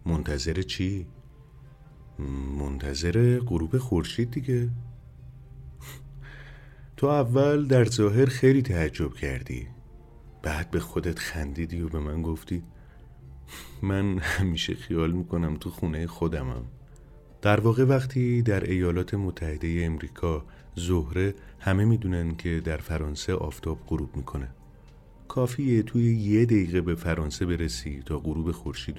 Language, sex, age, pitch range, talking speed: Persian, male, 30-49, 75-115 Hz, 110 wpm